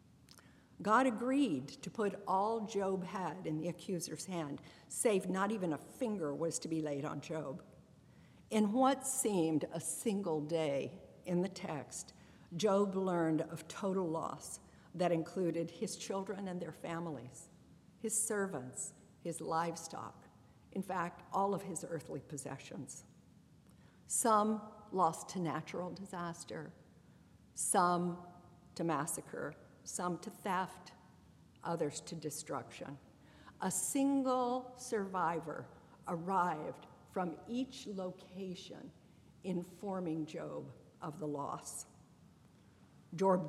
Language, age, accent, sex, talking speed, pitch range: English, 50-69, American, female, 110 wpm, 165-200 Hz